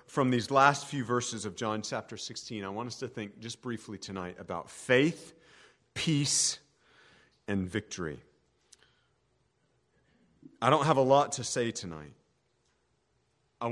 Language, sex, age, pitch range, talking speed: English, male, 40-59, 120-165 Hz, 135 wpm